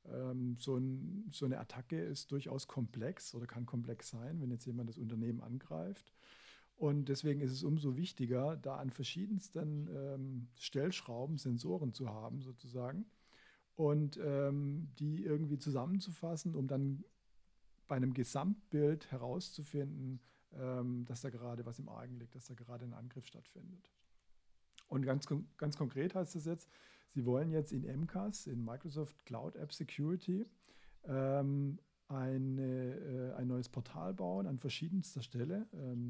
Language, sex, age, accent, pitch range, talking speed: German, male, 50-69, German, 125-160 Hz, 145 wpm